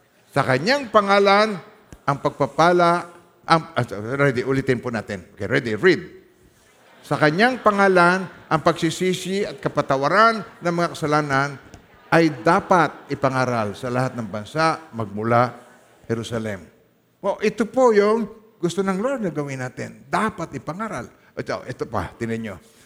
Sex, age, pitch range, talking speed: male, 50-69, 125-190 Hz, 125 wpm